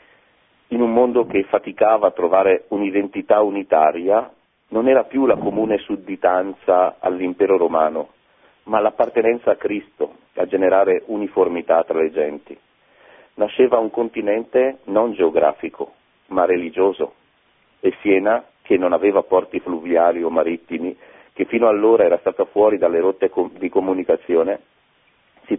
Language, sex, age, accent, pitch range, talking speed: Italian, male, 40-59, native, 95-130 Hz, 125 wpm